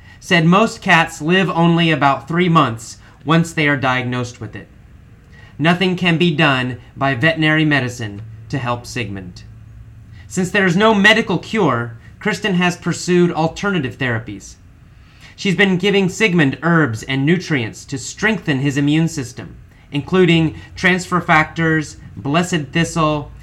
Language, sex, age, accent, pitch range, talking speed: English, male, 30-49, American, 120-175 Hz, 135 wpm